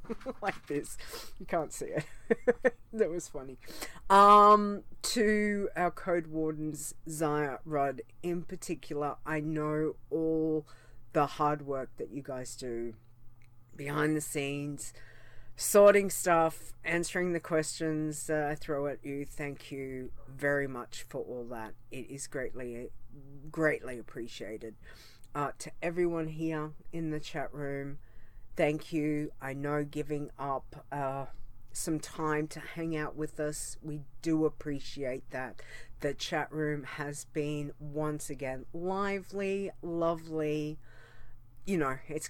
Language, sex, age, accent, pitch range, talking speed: English, female, 40-59, Australian, 120-160 Hz, 130 wpm